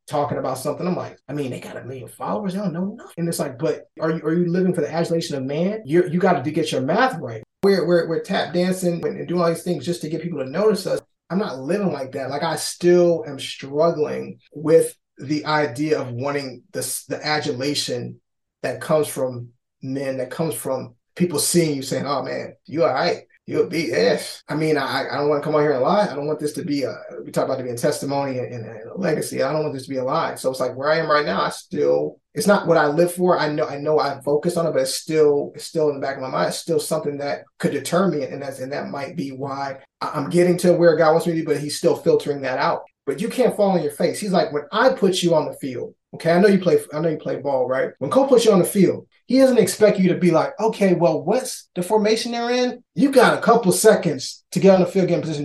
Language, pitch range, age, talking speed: English, 145-205 Hz, 20-39, 280 wpm